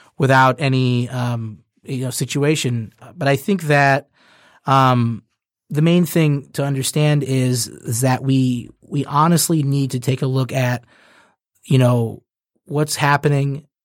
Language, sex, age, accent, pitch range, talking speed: English, male, 30-49, American, 125-150 Hz, 140 wpm